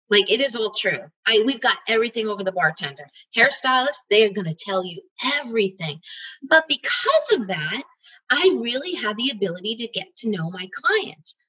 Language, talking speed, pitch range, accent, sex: English, 185 wpm, 195-265 Hz, American, female